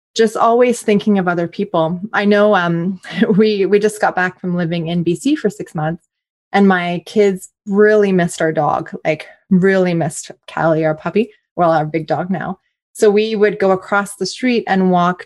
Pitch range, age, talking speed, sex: 170-210 Hz, 20-39, 190 wpm, female